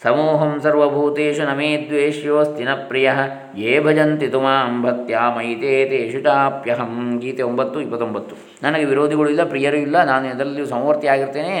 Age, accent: 20-39, native